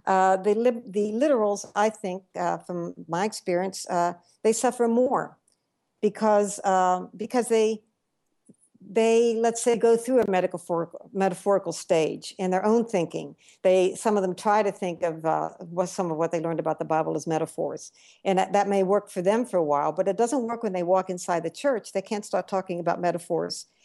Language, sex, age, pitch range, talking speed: English, female, 60-79, 170-210 Hz, 195 wpm